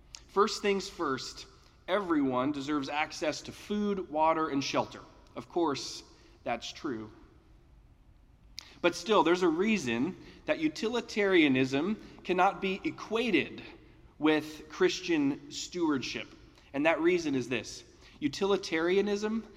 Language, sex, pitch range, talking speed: English, male, 140-225 Hz, 105 wpm